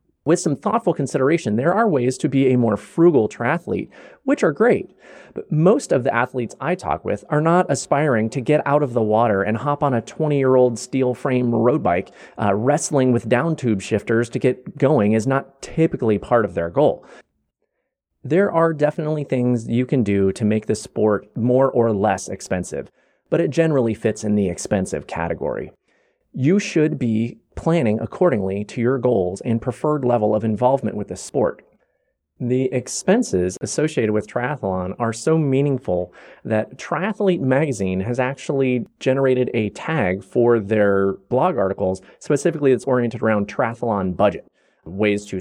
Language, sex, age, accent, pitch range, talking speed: English, male, 30-49, American, 110-140 Hz, 165 wpm